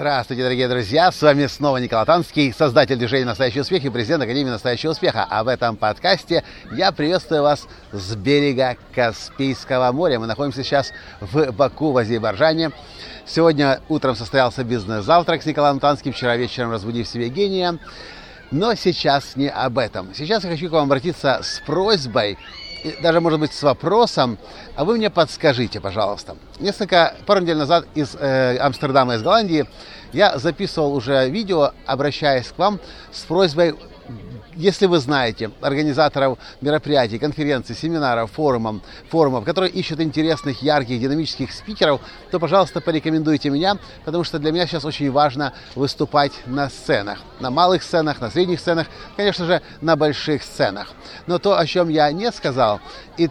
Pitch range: 130-170 Hz